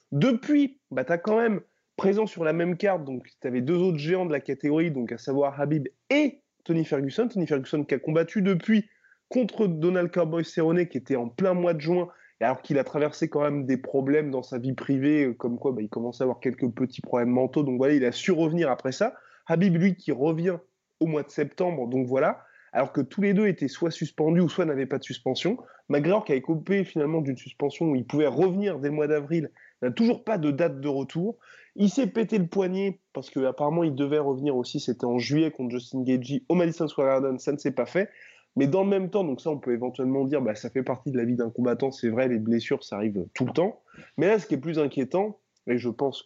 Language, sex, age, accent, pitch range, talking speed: French, male, 20-39, French, 130-180 Hz, 245 wpm